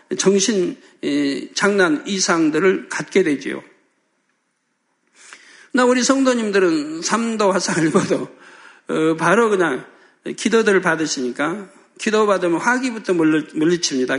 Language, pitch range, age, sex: Korean, 170-230 Hz, 60-79, male